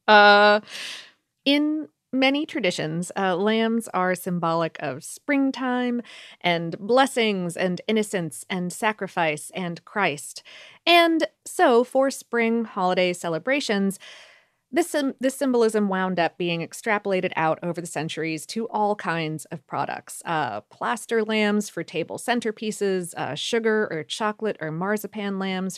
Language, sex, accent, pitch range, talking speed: English, female, American, 170-230 Hz, 125 wpm